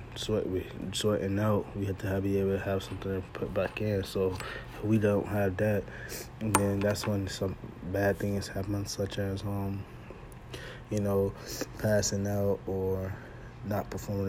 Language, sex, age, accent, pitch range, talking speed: English, male, 20-39, American, 100-115 Hz, 170 wpm